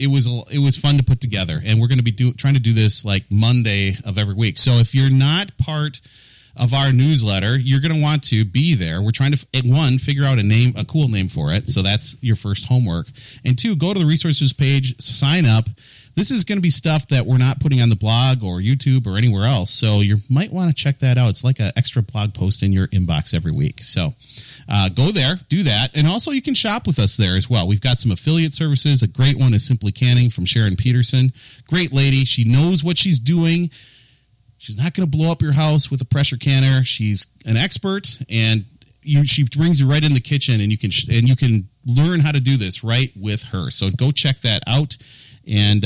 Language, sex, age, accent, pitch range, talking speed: English, male, 30-49, American, 110-145 Hz, 240 wpm